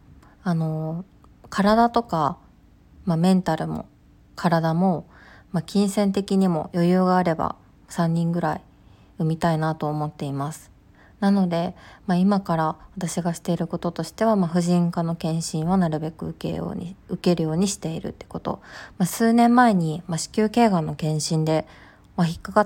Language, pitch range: Japanese, 155-195 Hz